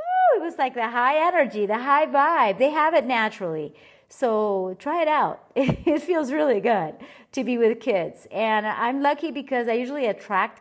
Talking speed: 180 wpm